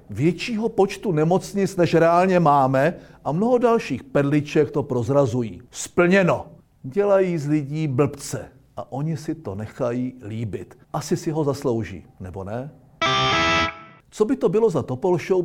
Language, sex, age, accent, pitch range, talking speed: Czech, male, 50-69, native, 130-175 Hz, 135 wpm